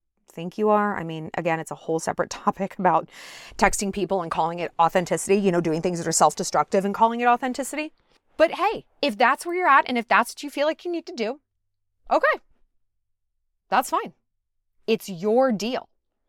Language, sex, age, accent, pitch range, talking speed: English, female, 30-49, American, 180-280 Hz, 195 wpm